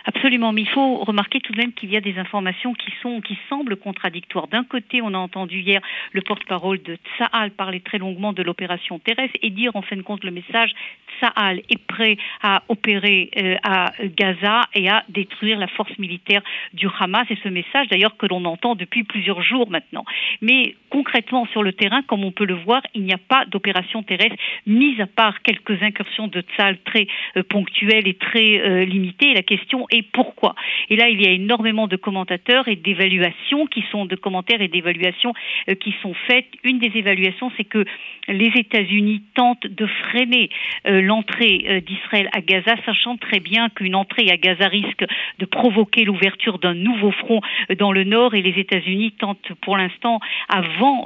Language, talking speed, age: French, 195 wpm, 50-69